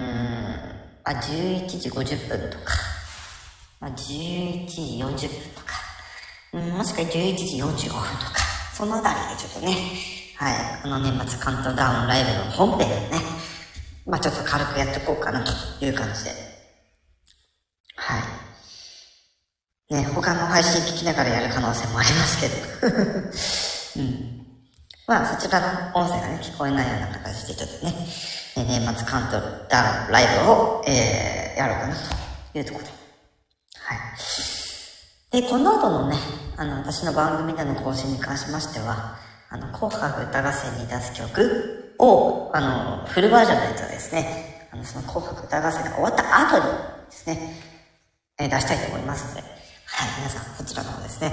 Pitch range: 120-160 Hz